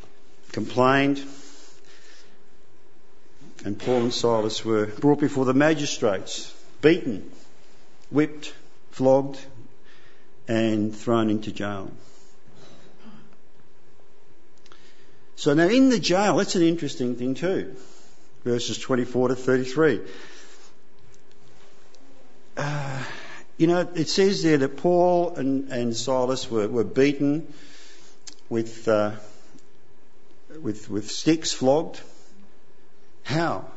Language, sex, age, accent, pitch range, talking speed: English, male, 50-69, Australian, 110-155 Hz, 90 wpm